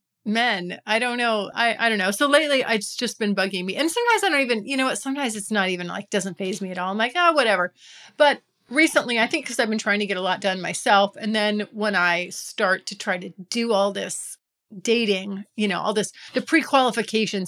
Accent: American